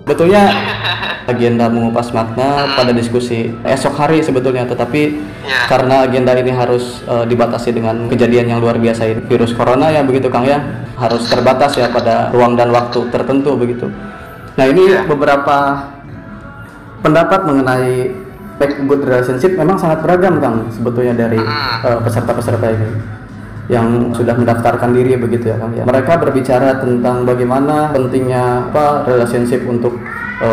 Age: 20-39